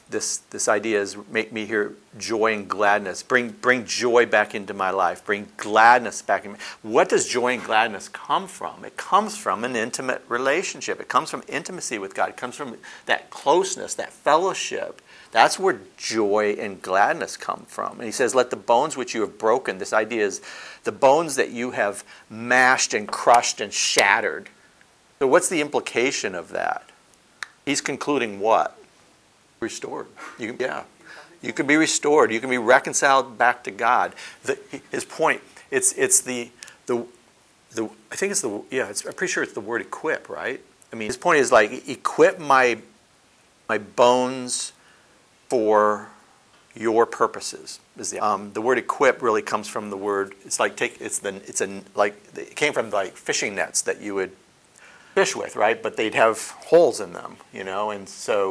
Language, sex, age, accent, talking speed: English, male, 50-69, American, 180 wpm